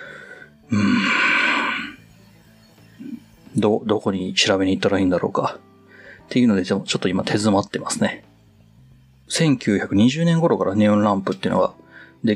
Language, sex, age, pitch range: Japanese, male, 30-49, 105-165 Hz